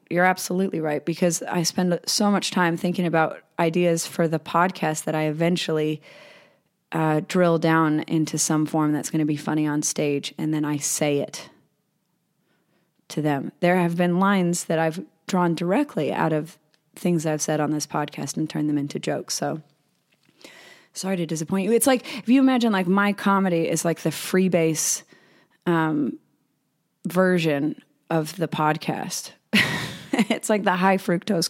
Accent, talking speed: American, 165 wpm